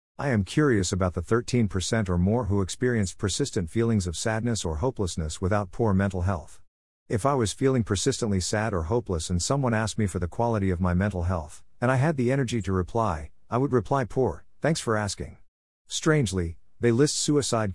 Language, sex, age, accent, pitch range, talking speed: English, male, 50-69, American, 90-115 Hz, 195 wpm